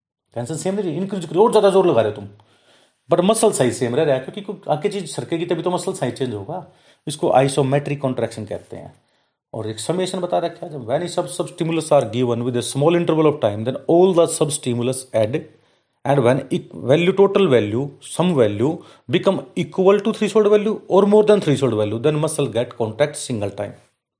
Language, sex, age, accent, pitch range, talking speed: Hindi, male, 30-49, native, 120-170 Hz, 150 wpm